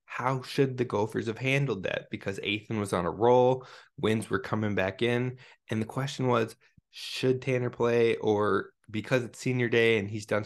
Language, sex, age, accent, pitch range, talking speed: English, male, 20-39, American, 105-130 Hz, 190 wpm